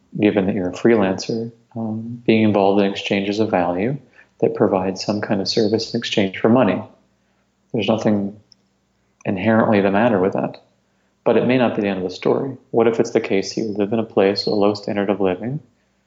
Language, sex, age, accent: English, male, 30-49, American